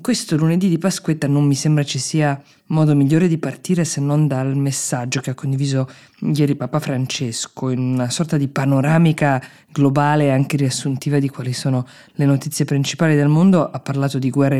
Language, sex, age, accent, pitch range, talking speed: Italian, female, 20-39, native, 130-150 Hz, 180 wpm